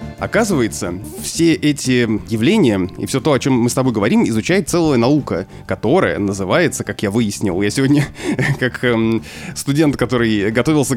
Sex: male